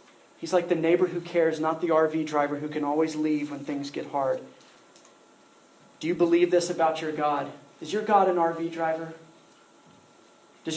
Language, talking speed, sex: English, 180 wpm, male